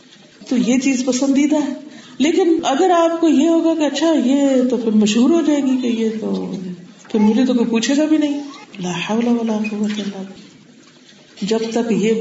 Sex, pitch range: female, 190-255 Hz